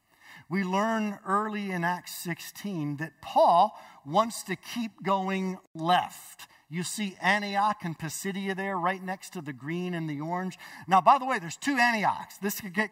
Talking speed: 170 wpm